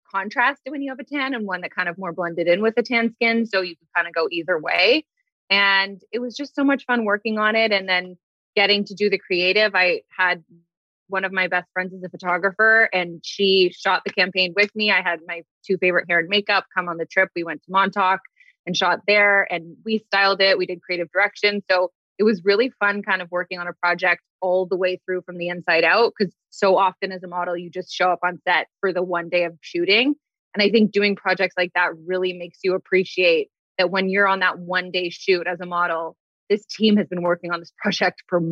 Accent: American